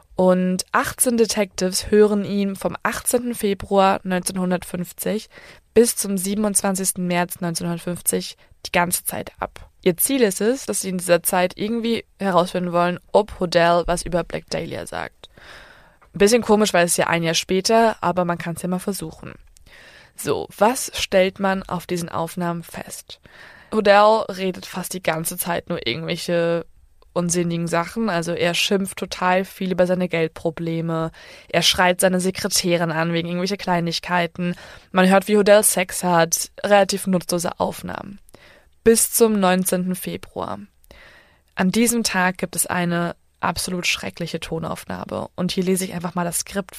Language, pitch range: German, 175-200 Hz